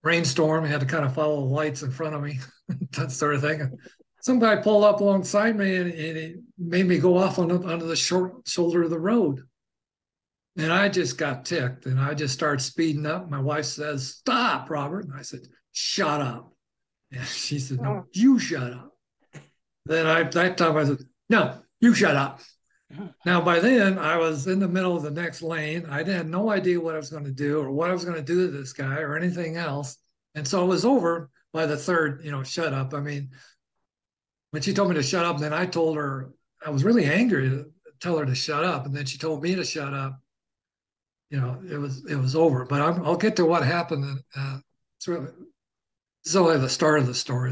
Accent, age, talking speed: American, 60-79, 220 wpm